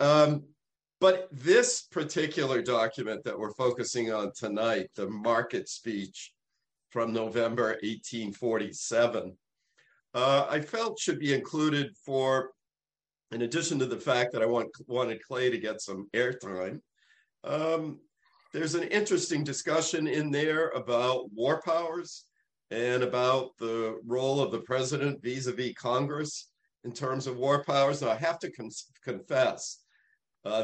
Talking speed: 135 wpm